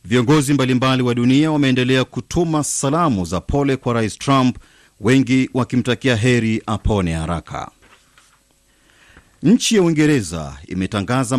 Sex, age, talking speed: male, 40-59, 110 wpm